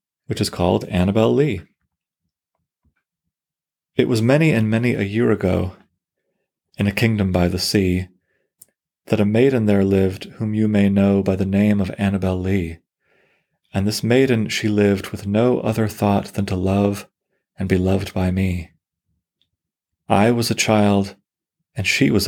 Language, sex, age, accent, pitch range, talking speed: English, male, 30-49, American, 90-110 Hz, 155 wpm